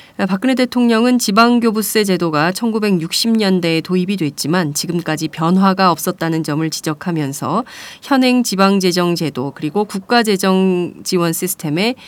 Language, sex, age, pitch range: Korean, female, 30-49, 165-215 Hz